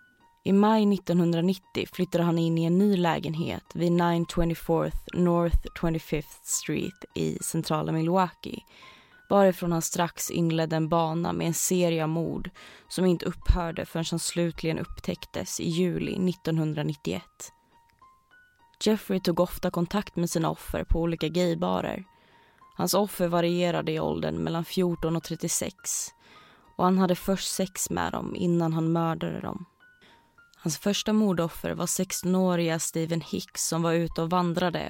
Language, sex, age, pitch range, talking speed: Swedish, female, 20-39, 165-190 Hz, 140 wpm